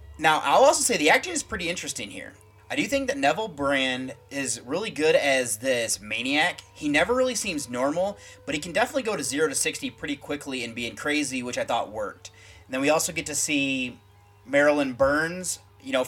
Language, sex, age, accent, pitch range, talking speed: English, male, 30-49, American, 130-180 Hz, 210 wpm